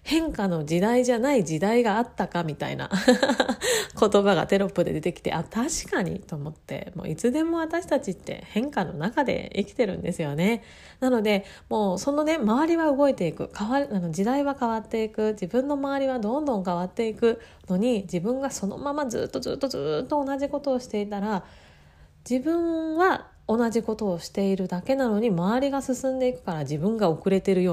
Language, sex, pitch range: Japanese, female, 190-275 Hz